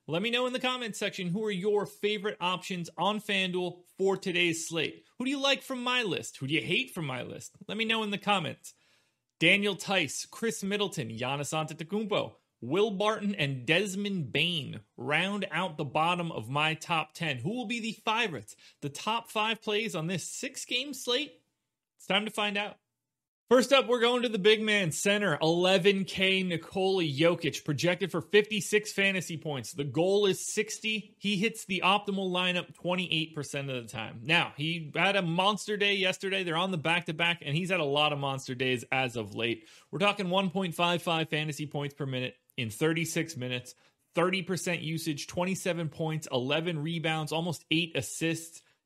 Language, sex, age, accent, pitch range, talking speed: English, male, 30-49, American, 155-205 Hz, 180 wpm